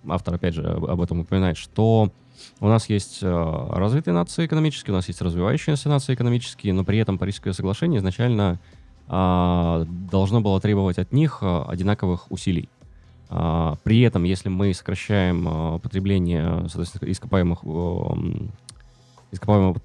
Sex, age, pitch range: male, 20-39, 85-110 Hz